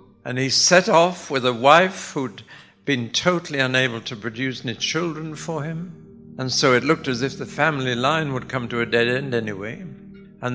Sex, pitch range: male, 120-155 Hz